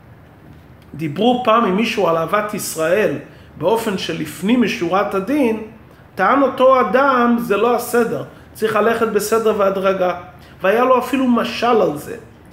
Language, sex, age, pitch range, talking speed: Hebrew, male, 40-59, 190-240 Hz, 130 wpm